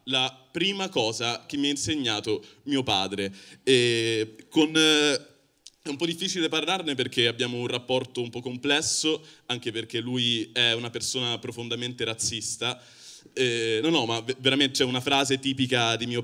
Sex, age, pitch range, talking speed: male, 20-39, 115-145 Hz, 165 wpm